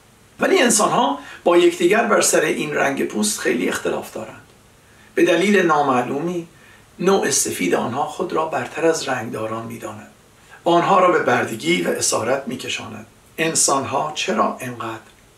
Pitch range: 120-180 Hz